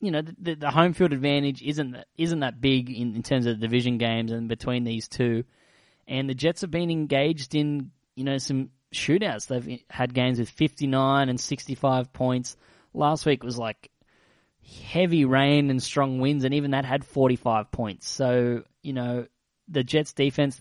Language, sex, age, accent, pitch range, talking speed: English, male, 20-39, Australian, 120-140 Hz, 180 wpm